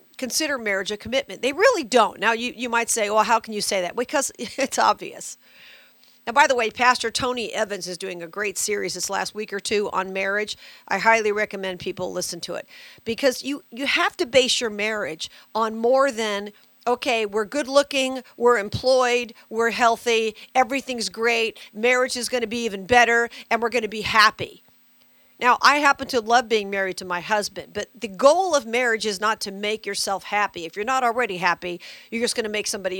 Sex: female